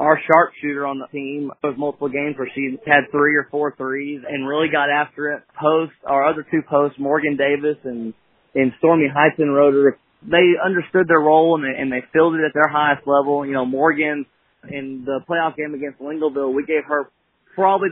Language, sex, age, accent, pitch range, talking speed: English, male, 20-39, American, 140-160 Hz, 200 wpm